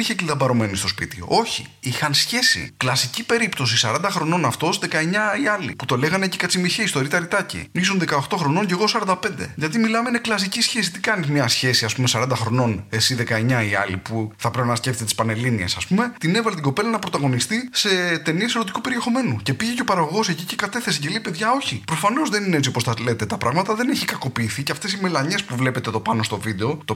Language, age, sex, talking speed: English, 20-39, male, 220 wpm